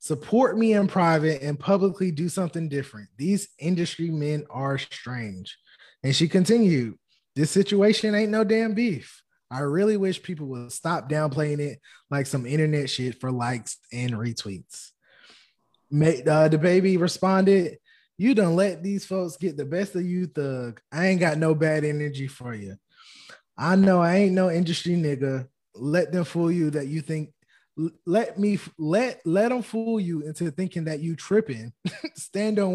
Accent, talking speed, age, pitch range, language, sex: American, 165 wpm, 20-39, 150-200 Hz, English, male